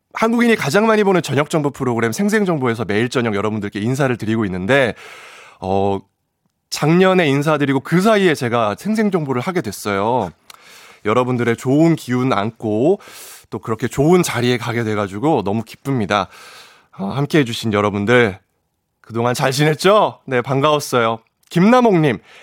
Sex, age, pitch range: male, 20-39, 115-195 Hz